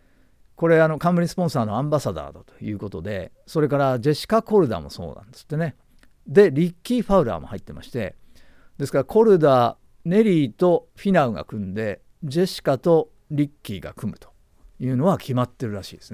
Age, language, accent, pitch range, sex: 50-69, Japanese, native, 105-160 Hz, male